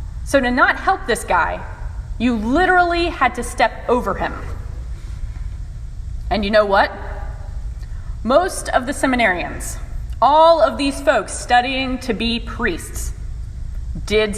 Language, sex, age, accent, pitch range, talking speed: English, female, 30-49, American, 255-325 Hz, 125 wpm